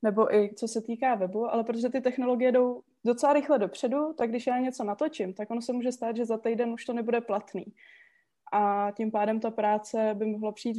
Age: 20-39